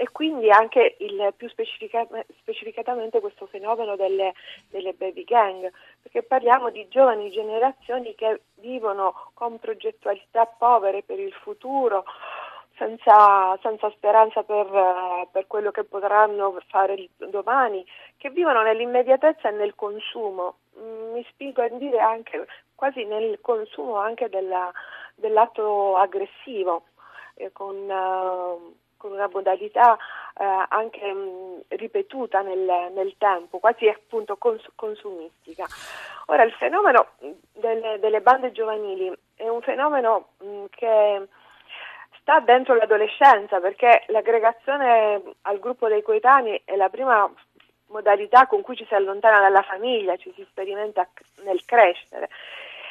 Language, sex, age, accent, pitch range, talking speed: Italian, female, 40-59, native, 195-255 Hz, 120 wpm